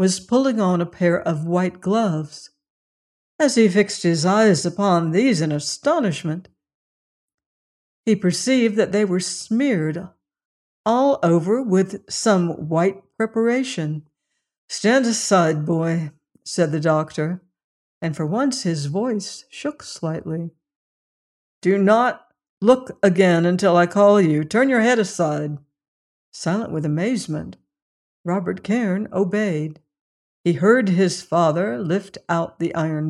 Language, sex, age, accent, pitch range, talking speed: English, female, 60-79, American, 160-210 Hz, 125 wpm